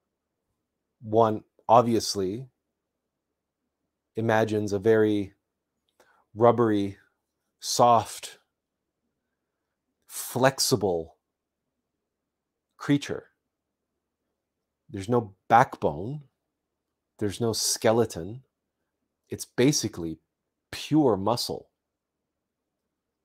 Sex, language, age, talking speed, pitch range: male, English, 30-49, 50 wpm, 90-125 Hz